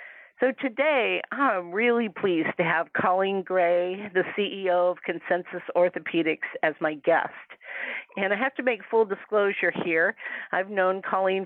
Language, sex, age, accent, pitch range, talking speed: English, female, 50-69, American, 175-220 Hz, 145 wpm